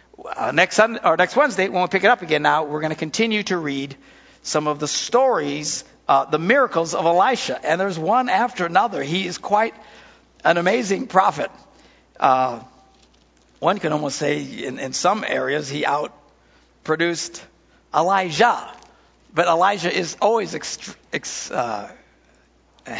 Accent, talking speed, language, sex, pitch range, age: American, 150 wpm, English, male, 140-175 Hz, 60-79